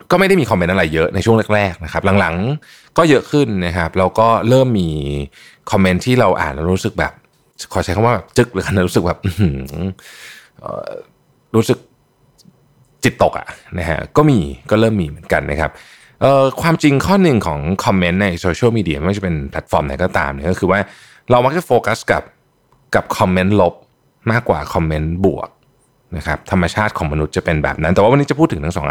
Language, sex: Thai, male